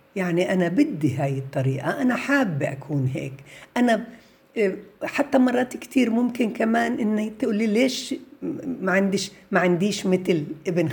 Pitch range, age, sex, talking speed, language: 155-215 Hz, 60-79, female, 130 wpm, Arabic